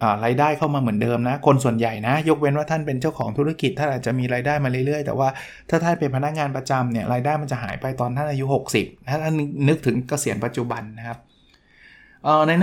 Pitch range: 120-150 Hz